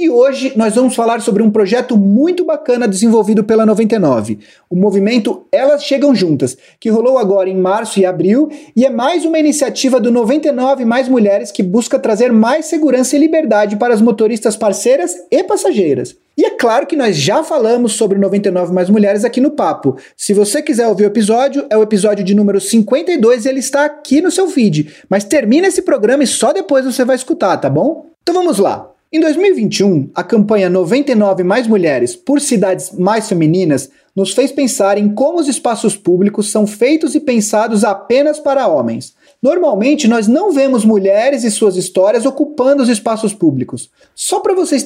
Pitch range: 205-280 Hz